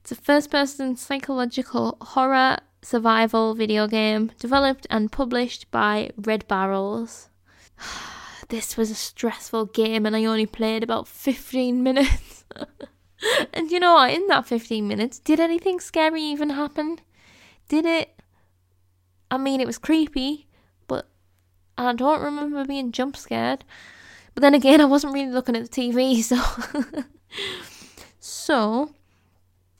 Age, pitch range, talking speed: 10-29, 220-270 Hz, 130 wpm